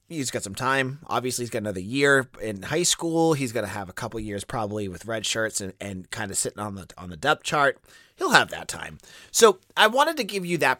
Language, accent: English, American